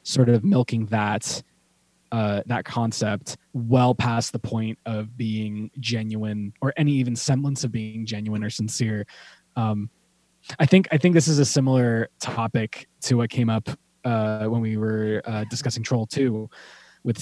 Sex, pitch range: male, 110-130 Hz